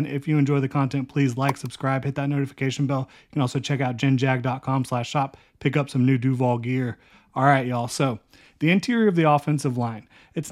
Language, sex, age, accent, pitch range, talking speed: English, male, 30-49, American, 130-150 Hz, 205 wpm